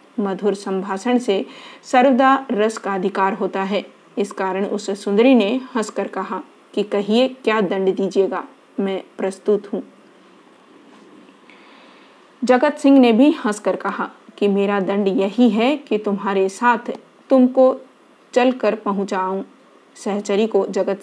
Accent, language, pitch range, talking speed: native, Hindi, 195-240 Hz, 125 wpm